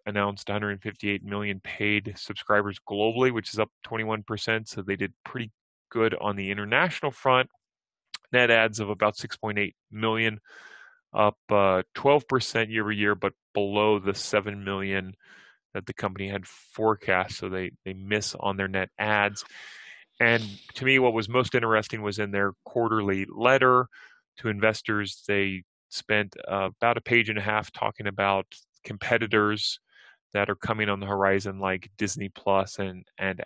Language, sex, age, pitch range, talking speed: English, male, 30-49, 100-110 Hz, 155 wpm